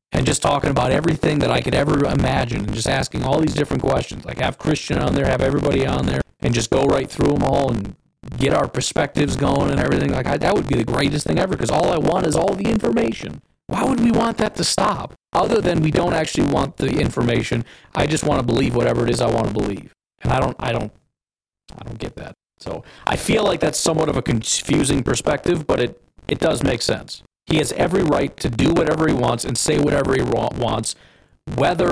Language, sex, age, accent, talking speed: English, male, 40-59, American, 235 wpm